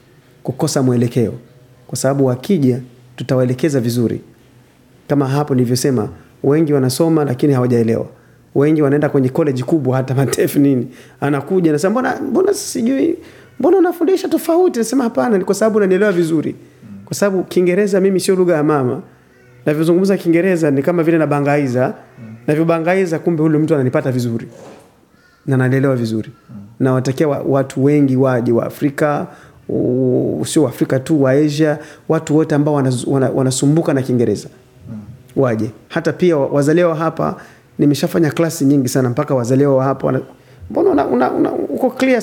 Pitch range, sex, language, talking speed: 130-165 Hz, male, Swahili, 140 wpm